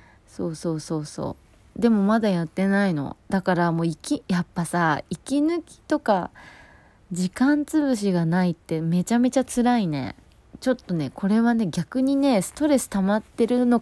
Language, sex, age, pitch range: Japanese, female, 20-39, 160-215 Hz